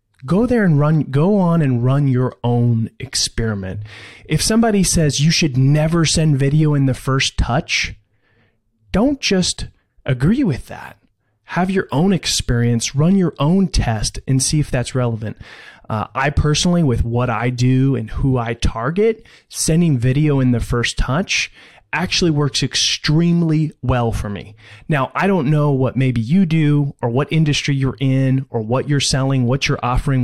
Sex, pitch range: male, 120-155 Hz